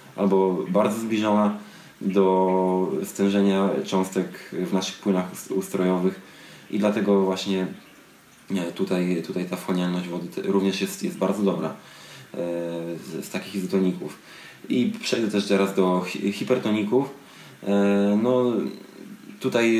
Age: 20-39